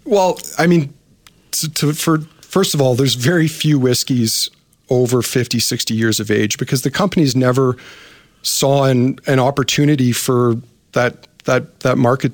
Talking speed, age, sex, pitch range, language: 155 wpm, 40-59, male, 120-145 Hz, English